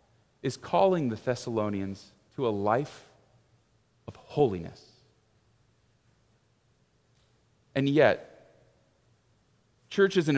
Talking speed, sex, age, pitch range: 75 wpm, male, 30-49, 120-190 Hz